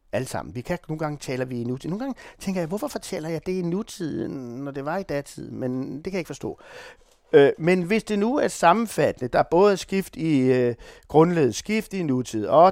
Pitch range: 120-170 Hz